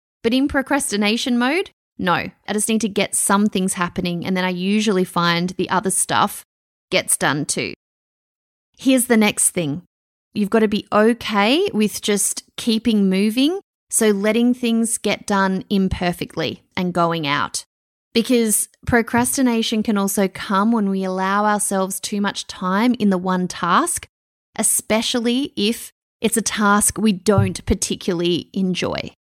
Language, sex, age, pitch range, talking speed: English, female, 20-39, 185-225 Hz, 145 wpm